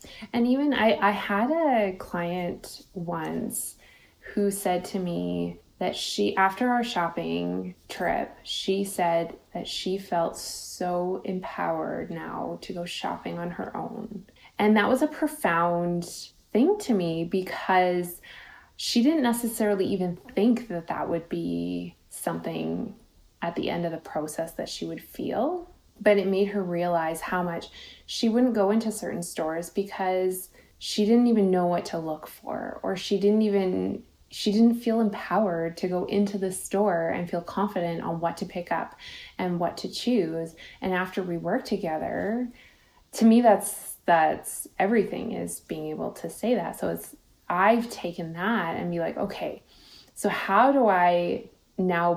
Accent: American